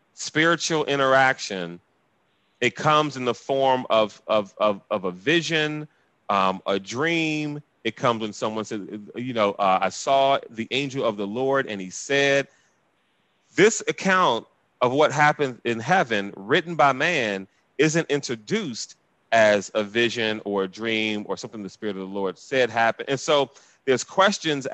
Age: 30-49